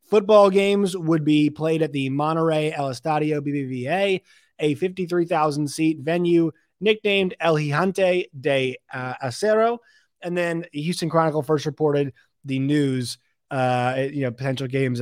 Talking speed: 130 wpm